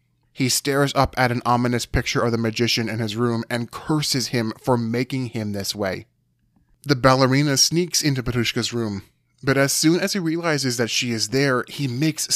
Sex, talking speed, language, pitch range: male, 190 wpm, English, 115-140 Hz